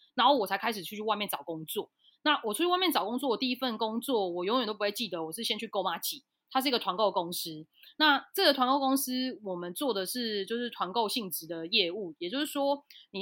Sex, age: female, 20-39